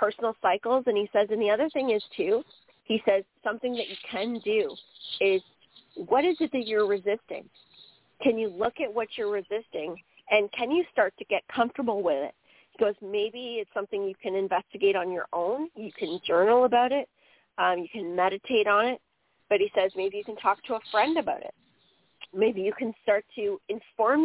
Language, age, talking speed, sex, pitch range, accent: English, 30-49, 200 wpm, female, 195-245 Hz, American